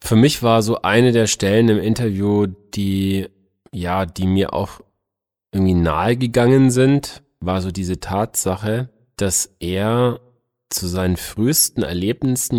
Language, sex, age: German, male, 30-49